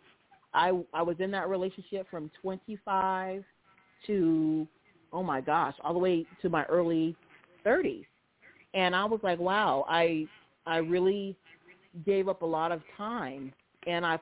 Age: 40-59